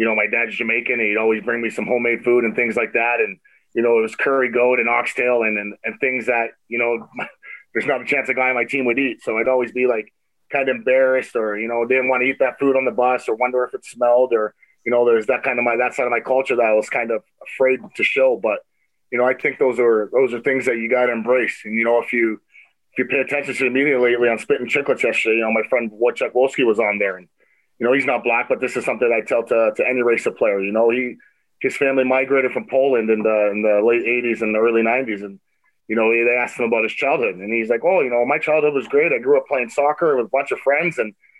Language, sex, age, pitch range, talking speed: English, male, 30-49, 115-130 Hz, 285 wpm